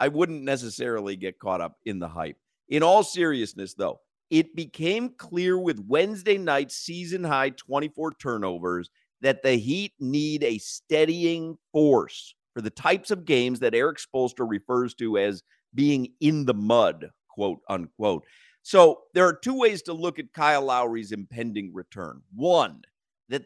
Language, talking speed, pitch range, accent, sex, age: English, 155 wpm, 115-165 Hz, American, male, 50-69